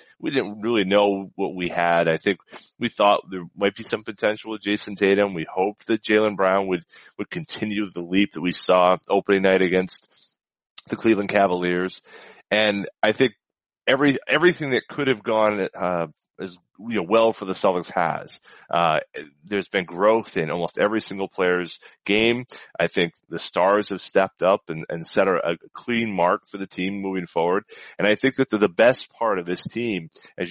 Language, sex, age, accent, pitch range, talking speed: English, male, 30-49, American, 95-115 Hz, 190 wpm